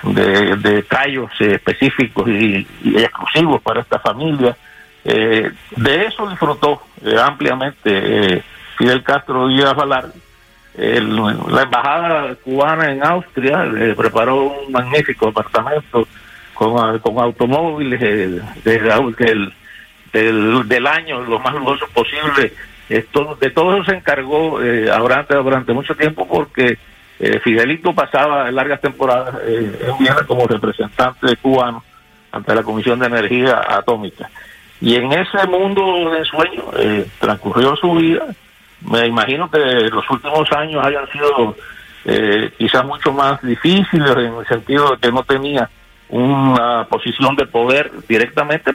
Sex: male